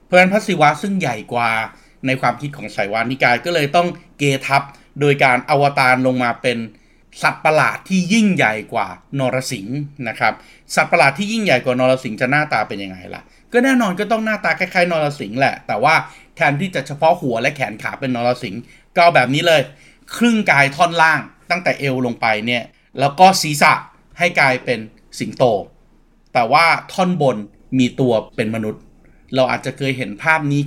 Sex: male